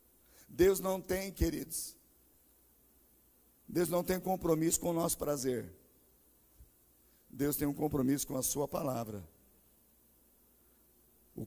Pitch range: 150-185 Hz